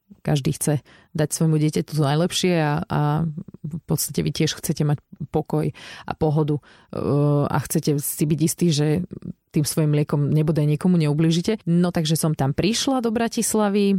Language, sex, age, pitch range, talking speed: Slovak, female, 30-49, 150-180 Hz, 160 wpm